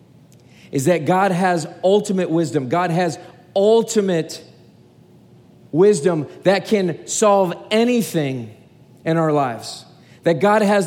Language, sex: English, male